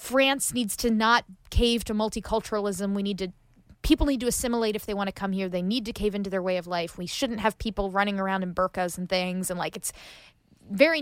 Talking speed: 235 wpm